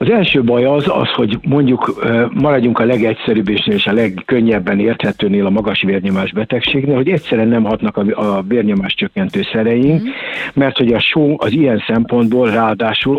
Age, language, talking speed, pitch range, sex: 60-79, Hungarian, 155 wpm, 110-145 Hz, male